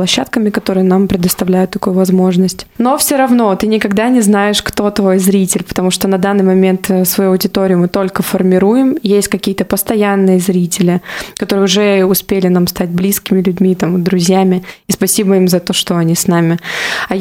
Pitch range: 185-205 Hz